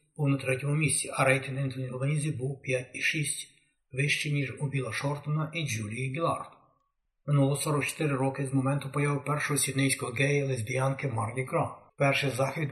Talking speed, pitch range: 140 wpm, 130-150 Hz